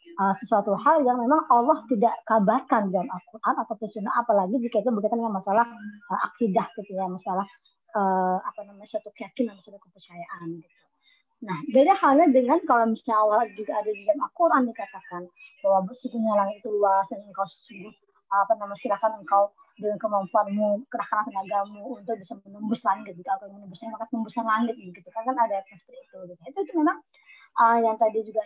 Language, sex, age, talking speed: Indonesian, male, 20-39, 140 wpm